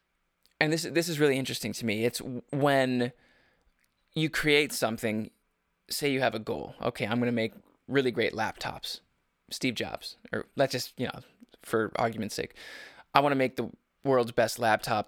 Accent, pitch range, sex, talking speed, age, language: American, 115-145 Hz, male, 175 wpm, 20-39, English